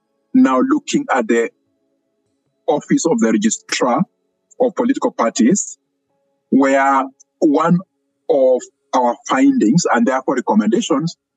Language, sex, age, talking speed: English, male, 50-69, 100 wpm